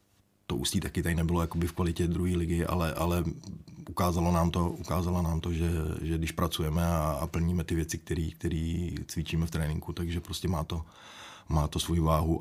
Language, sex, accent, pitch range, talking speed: Czech, male, native, 80-85 Hz, 175 wpm